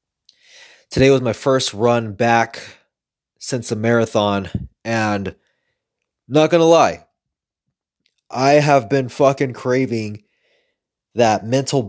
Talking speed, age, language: 105 wpm, 20-39, English